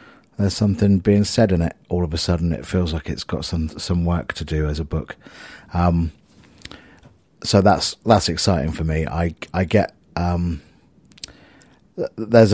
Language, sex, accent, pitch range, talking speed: English, male, British, 80-95 Hz, 170 wpm